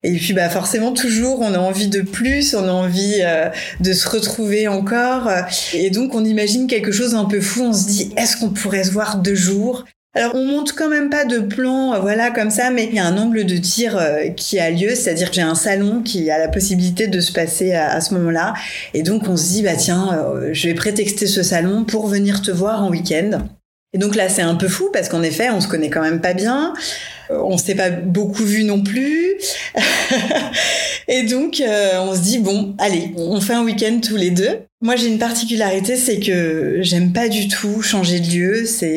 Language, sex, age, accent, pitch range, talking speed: French, female, 30-49, French, 185-230 Hz, 230 wpm